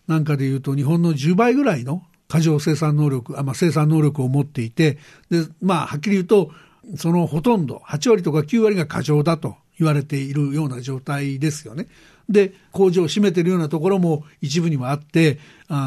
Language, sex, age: Japanese, male, 60-79